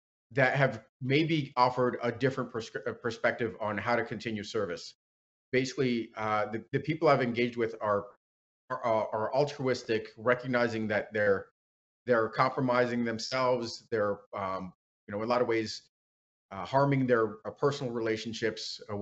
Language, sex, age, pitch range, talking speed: English, male, 30-49, 105-125 Hz, 150 wpm